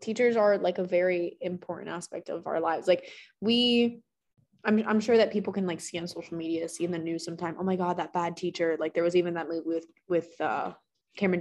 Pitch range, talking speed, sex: 170-205 Hz, 230 wpm, female